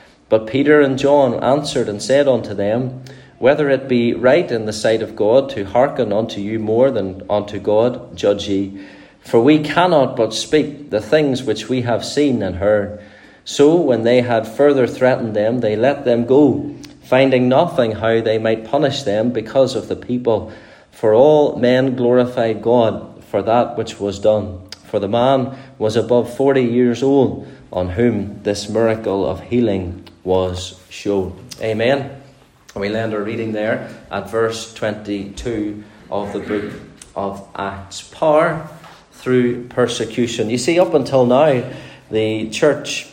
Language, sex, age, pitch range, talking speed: English, male, 30-49, 105-135 Hz, 160 wpm